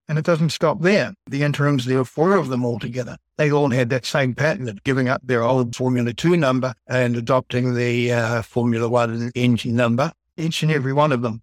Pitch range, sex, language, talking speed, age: 120-150 Hz, male, English, 220 wpm, 60-79